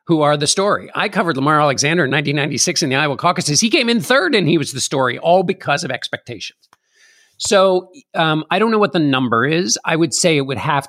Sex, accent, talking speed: male, American, 230 wpm